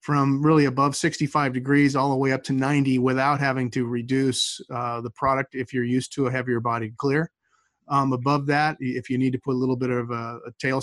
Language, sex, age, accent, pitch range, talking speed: English, male, 30-49, American, 125-145 Hz, 225 wpm